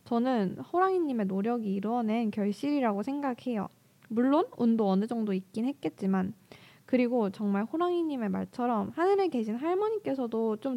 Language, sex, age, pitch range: Korean, female, 20-39, 200-275 Hz